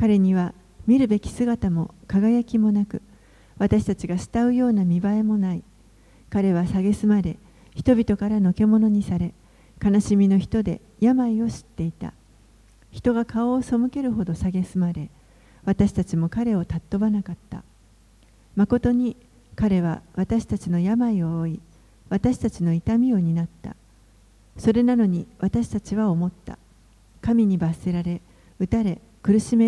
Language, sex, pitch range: Japanese, female, 170-220 Hz